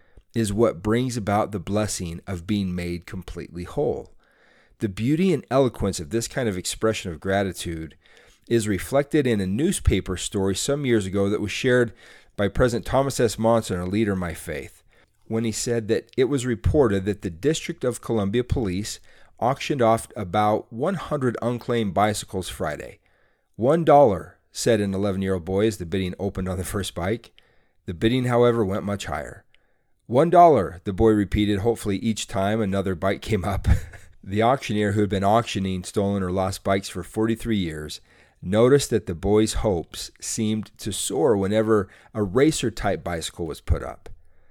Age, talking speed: 40-59, 165 wpm